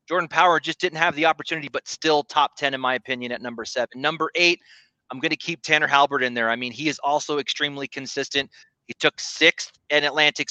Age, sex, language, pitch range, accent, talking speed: 30-49, male, English, 140-175 Hz, American, 225 wpm